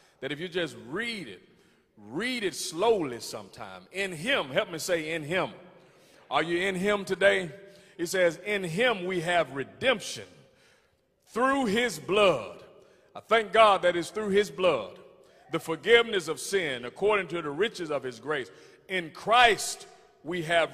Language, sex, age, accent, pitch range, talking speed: English, male, 40-59, American, 155-195 Hz, 160 wpm